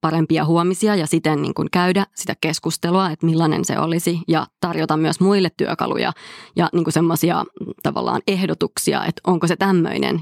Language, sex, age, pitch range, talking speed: Finnish, female, 20-39, 160-180 Hz, 165 wpm